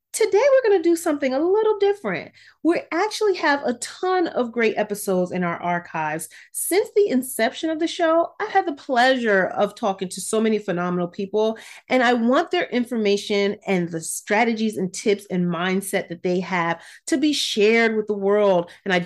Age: 30-49